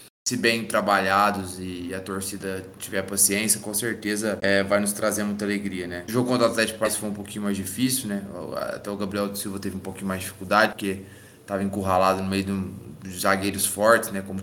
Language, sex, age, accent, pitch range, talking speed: Portuguese, male, 20-39, Brazilian, 95-110 Hz, 220 wpm